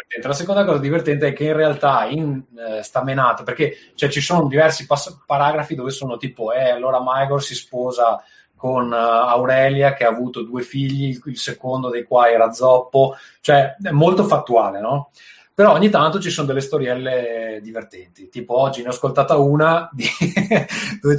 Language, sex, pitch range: Italian, male, 115-150 Hz